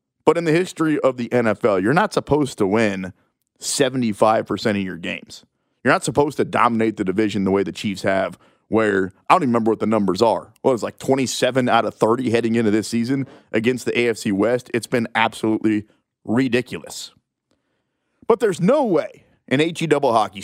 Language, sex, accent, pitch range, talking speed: English, male, American, 110-140 Hz, 190 wpm